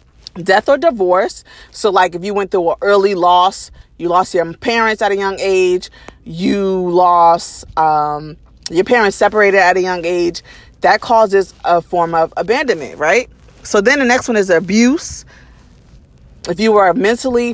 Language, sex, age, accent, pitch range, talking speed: English, female, 30-49, American, 165-215 Hz, 165 wpm